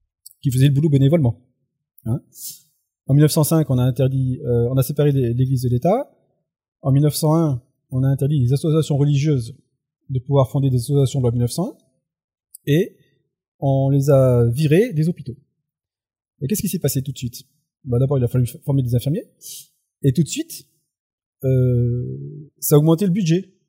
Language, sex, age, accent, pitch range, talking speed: French, male, 30-49, French, 125-155 Hz, 170 wpm